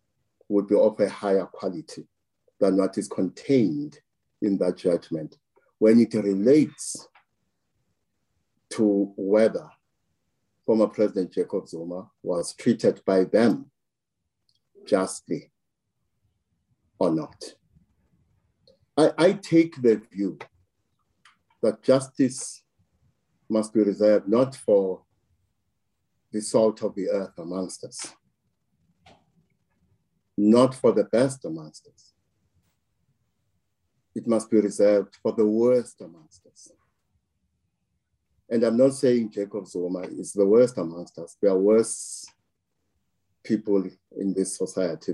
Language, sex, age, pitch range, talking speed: English, male, 50-69, 95-115 Hz, 110 wpm